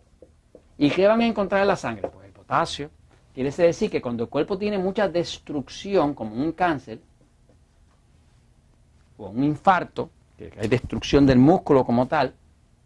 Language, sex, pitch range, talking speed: Spanish, male, 125-195 Hz, 155 wpm